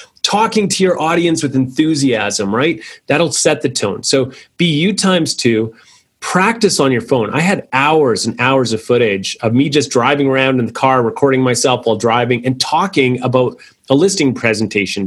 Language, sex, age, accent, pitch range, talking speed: English, male, 30-49, American, 115-145 Hz, 180 wpm